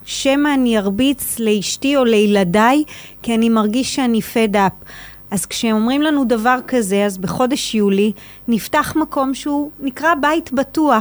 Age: 30-49